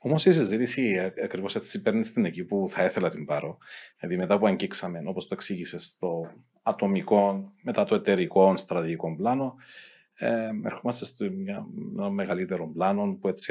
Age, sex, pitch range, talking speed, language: 40-59, male, 90-125 Hz, 145 wpm, Greek